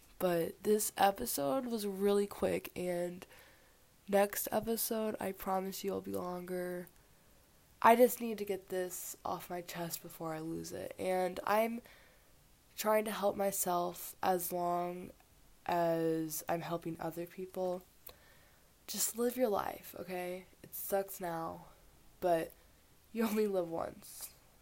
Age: 20-39